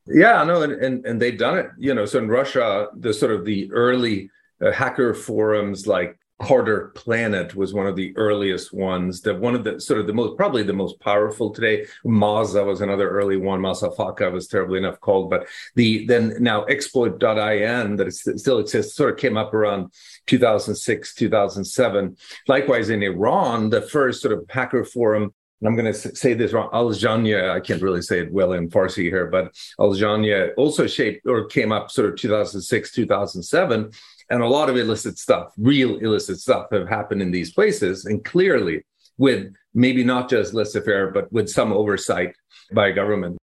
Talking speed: 185 wpm